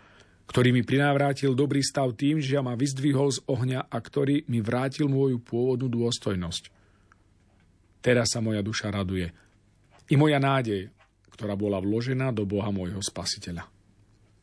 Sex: male